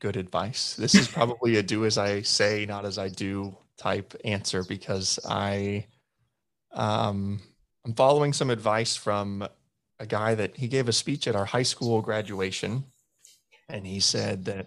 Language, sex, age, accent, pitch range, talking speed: English, male, 30-49, American, 100-115 Hz, 165 wpm